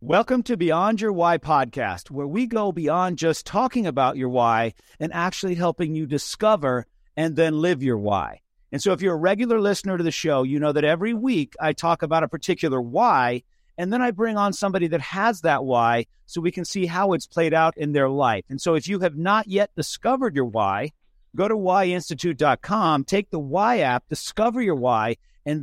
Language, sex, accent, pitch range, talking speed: English, male, American, 145-195 Hz, 205 wpm